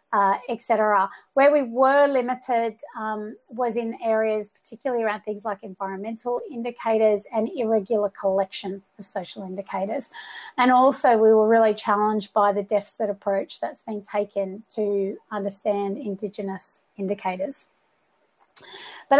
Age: 30-49